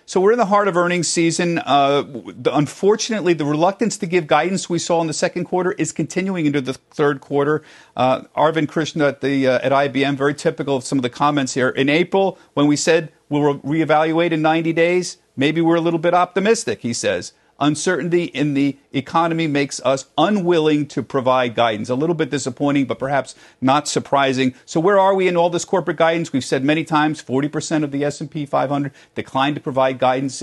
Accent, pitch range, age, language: American, 140-180 Hz, 50-69, English